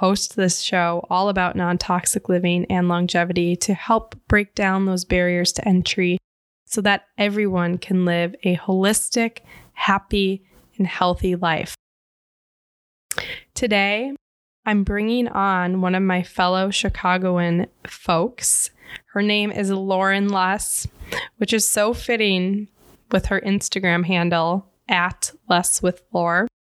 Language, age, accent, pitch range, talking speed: English, 10-29, American, 180-205 Hz, 120 wpm